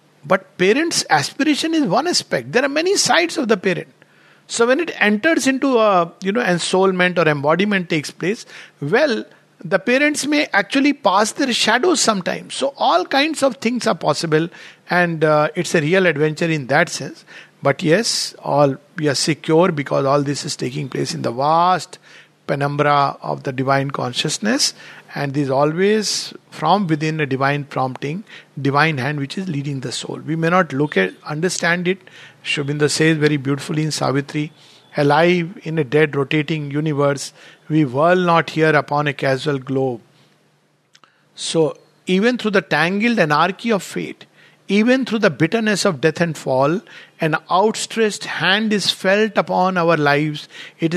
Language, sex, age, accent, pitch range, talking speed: English, male, 50-69, Indian, 150-200 Hz, 165 wpm